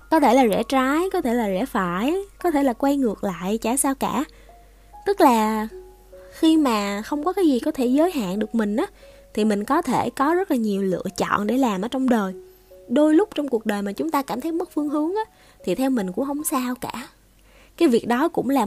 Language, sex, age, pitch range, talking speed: Vietnamese, female, 20-39, 210-290 Hz, 240 wpm